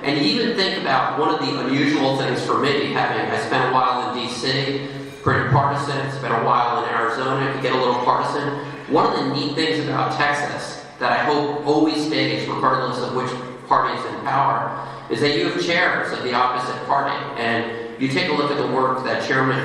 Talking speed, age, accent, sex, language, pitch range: 205 wpm, 40-59, American, male, English, 115-140 Hz